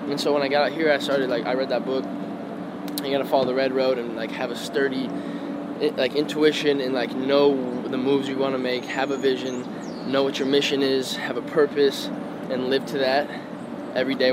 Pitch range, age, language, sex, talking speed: 125-145 Hz, 10-29, English, male, 225 wpm